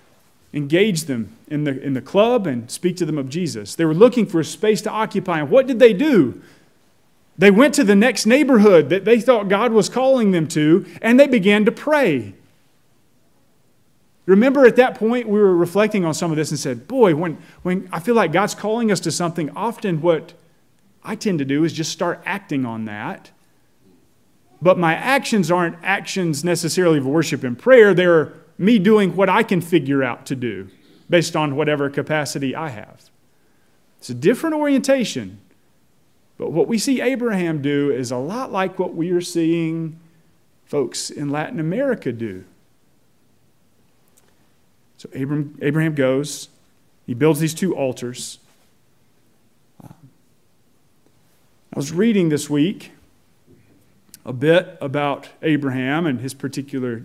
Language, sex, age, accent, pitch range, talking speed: English, male, 30-49, American, 140-210 Hz, 160 wpm